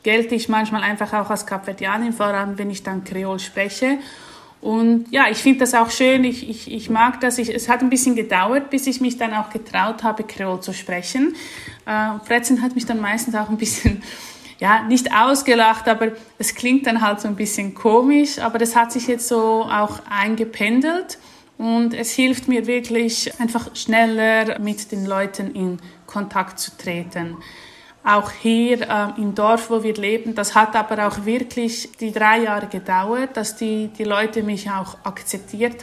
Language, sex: German, female